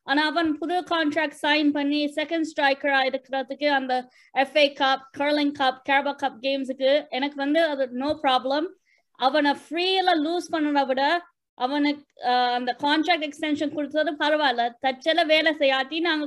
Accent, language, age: native, Tamil, 20-39